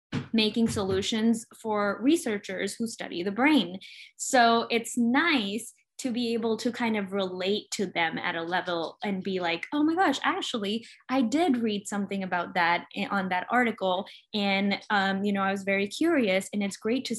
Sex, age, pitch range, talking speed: female, 10-29, 190-225 Hz, 180 wpm